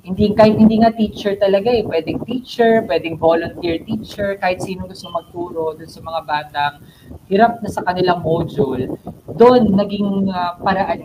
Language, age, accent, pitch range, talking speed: Filipino, 20-39, native, 145-195 Hz, 150 wpm